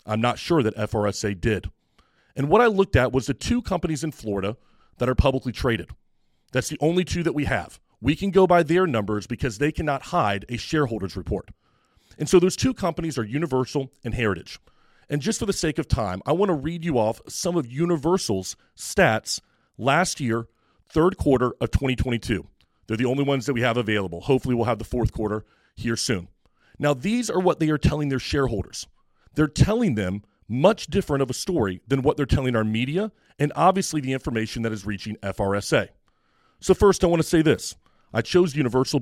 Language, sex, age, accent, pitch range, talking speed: English, male, 40-59, American, 110-155 Hz, 200 wpm